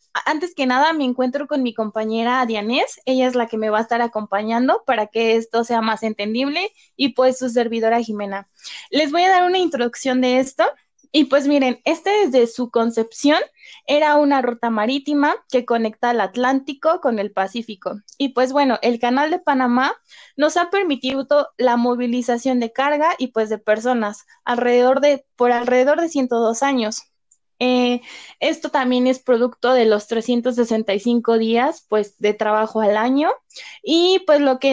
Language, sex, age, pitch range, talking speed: Spanish, female, 20-39, 230-285 Hz, 170 wpm